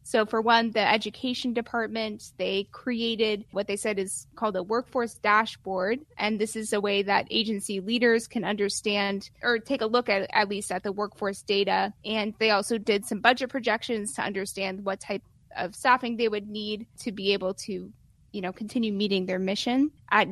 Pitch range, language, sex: 200-230 Hz, English, female